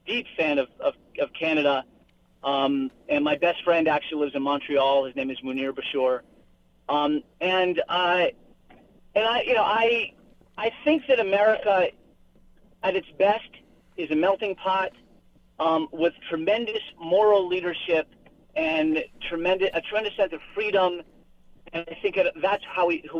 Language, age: English, 40-59